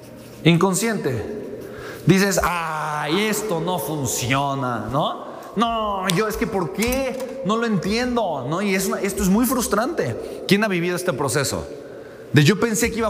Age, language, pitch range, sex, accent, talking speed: 30-49, Spanish, 155-215 Hz, male, Mexican, 160 wpm